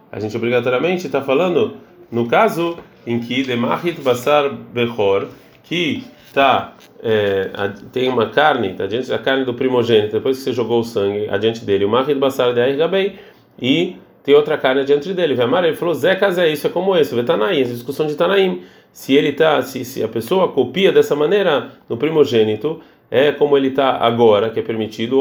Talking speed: 185 wpm